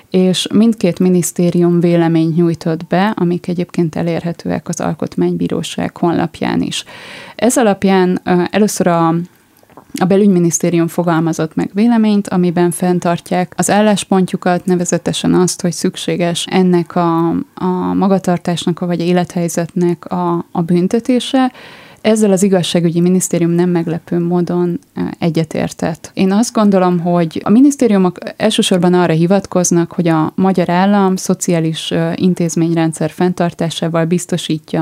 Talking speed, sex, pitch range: 110 wpm, female, 165-185 Hz